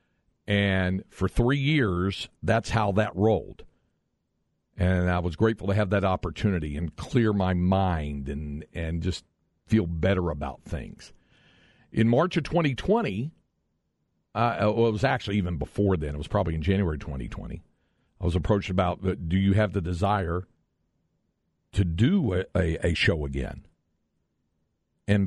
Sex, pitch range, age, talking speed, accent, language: male, 85-110 Hz, 50-69, 145 wpm, American, English